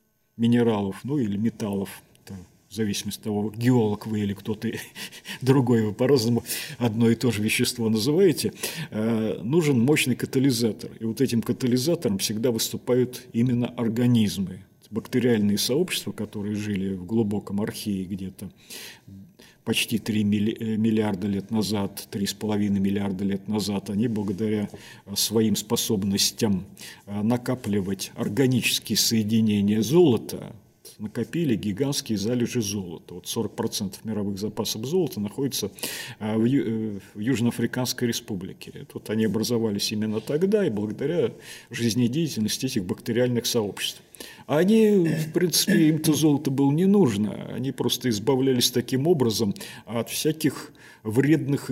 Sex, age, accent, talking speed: male, 40-59, native, 115 wpm